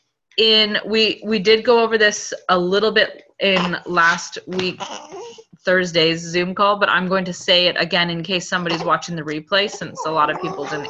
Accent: American